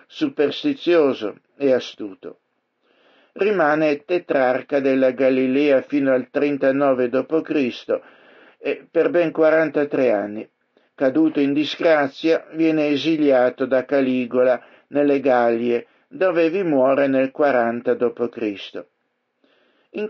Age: 60-79